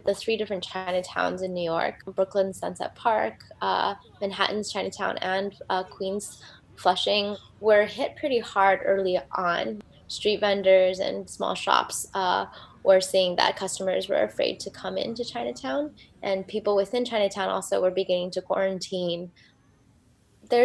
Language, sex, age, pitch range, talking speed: English, female, 10-29, 185-220 Hz, 140 wpm